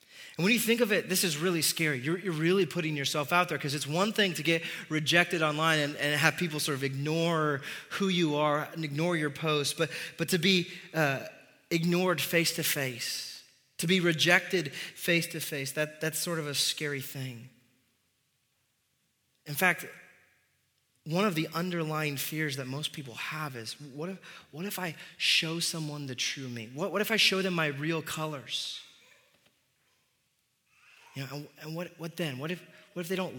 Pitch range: 140-175 Hz